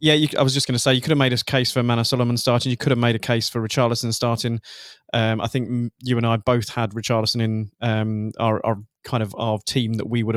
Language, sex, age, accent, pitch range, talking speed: English, male, 20-39, British, 110-125 Hz, 270 wpm